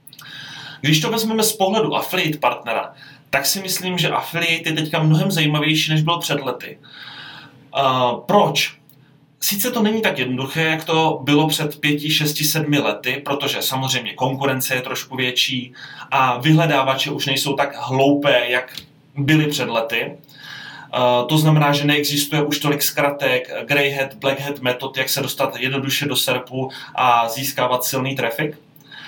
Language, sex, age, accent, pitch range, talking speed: Czech, male, 30-49, native, 135-155 Hz, 145 wpm